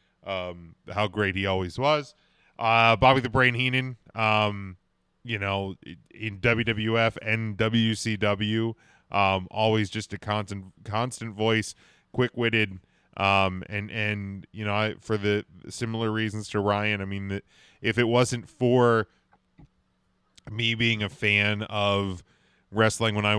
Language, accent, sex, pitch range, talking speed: English, American, male, 100-120 Hz, 135 wpm